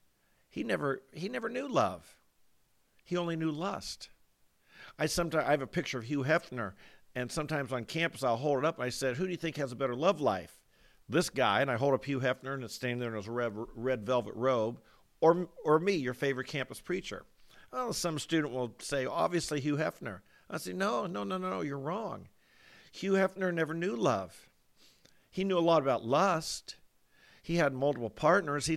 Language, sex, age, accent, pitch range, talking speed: English, male, 50-69, American, 125-160 Hz, 205 wpm